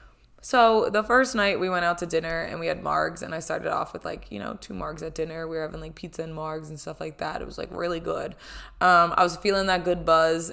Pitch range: 160-190 Hz